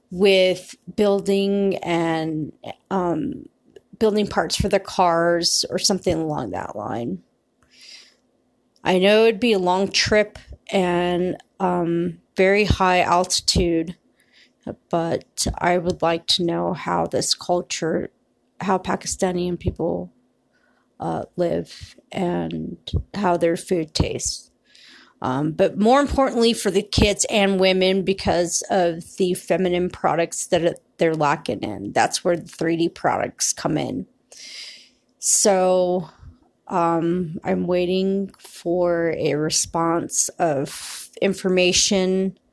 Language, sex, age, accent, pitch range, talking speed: English, female, 30-49, American, 170-195 Hz, 115 wpm